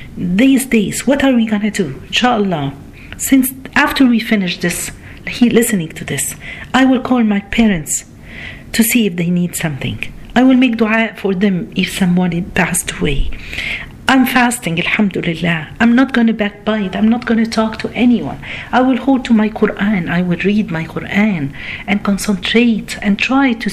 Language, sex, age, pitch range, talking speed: Arabic, female, 50-69, 180-245 Hz, 175 wpm